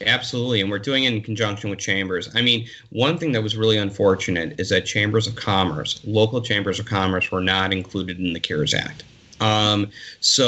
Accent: American